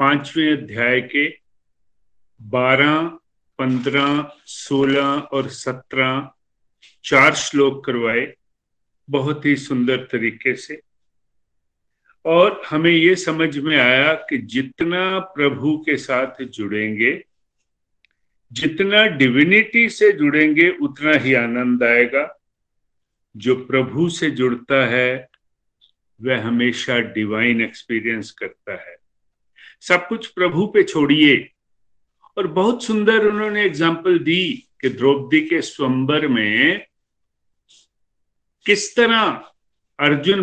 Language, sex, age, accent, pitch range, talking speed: Hindi, male, 50-69, native, 130-185 Hz, 100 wpm